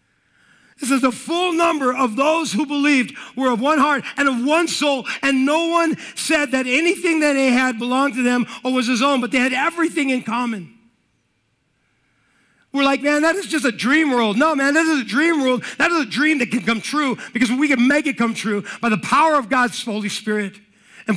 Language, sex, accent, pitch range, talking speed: English, male, American, 235-295 Hz, 220 wpm